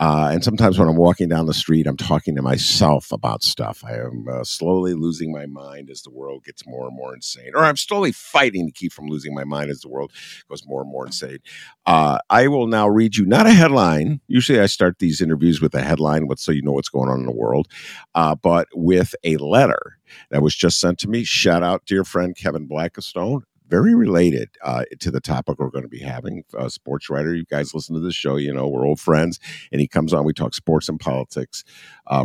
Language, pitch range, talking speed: English, 75-120 Hz, 235 wpm